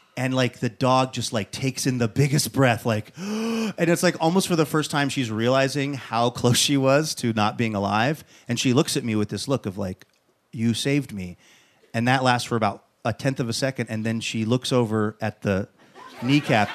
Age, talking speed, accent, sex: 30-49, 220 wpm, American, male